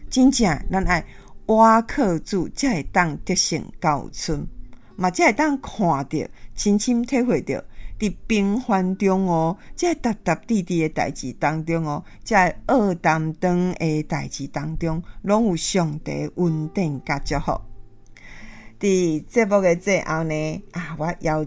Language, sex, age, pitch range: Chinese, female, 50-69, 155-220 Hz